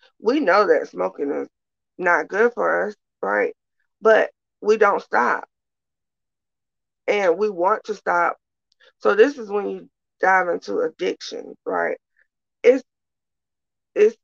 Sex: female